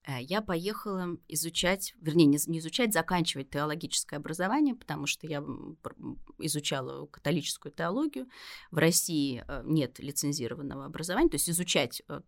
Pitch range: 145-215 Hz